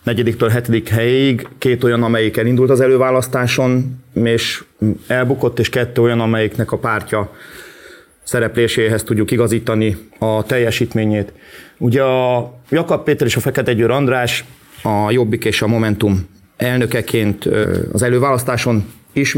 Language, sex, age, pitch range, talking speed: Hungarian, male, 30-49, 115-130 Hz, 125 wpm